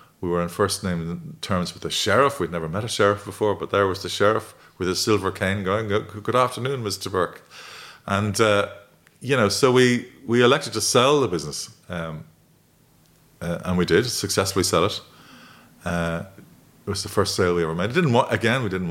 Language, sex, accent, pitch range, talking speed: English, male, Irish, 90-120 Hz, 200 wpm